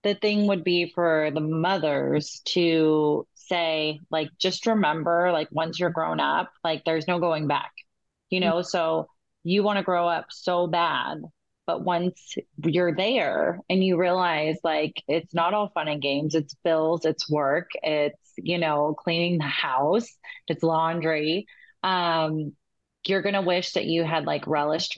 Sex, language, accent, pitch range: female, English, American, 155-175 Hz